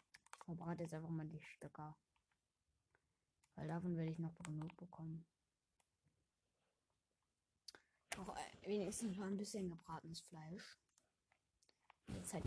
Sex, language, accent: female, German, German